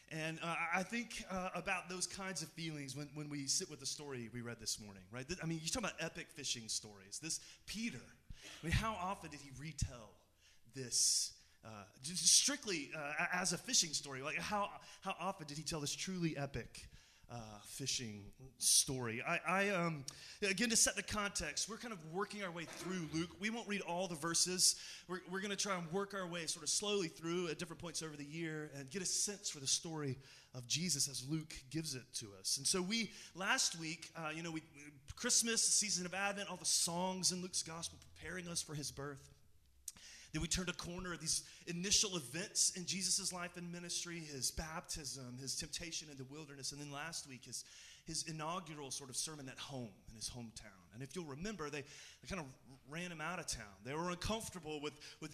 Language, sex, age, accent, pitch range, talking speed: English, male, 30-49, American, 130-180 Hz, 210 wpm